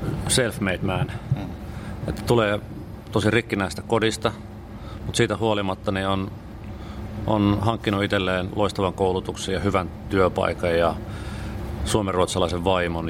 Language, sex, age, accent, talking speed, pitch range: Finnish, male, 30-49, native, 105 wpm, 95-110 Hz